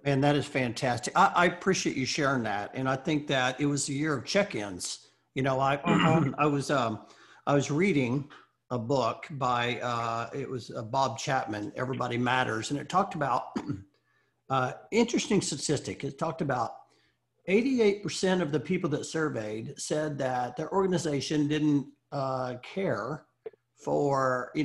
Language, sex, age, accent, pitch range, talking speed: English, male, 50-69, American, 135-170 Hz, 160 wpm